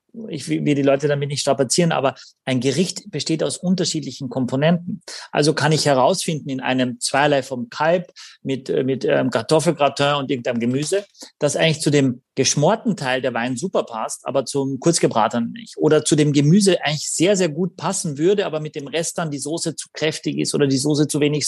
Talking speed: 190 wpm